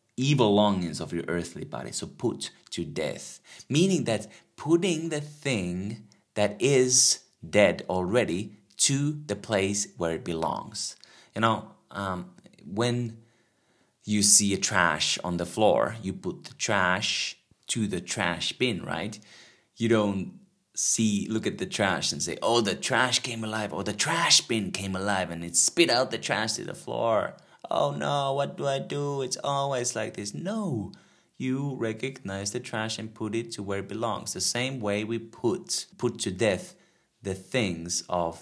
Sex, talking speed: male, 165 wpm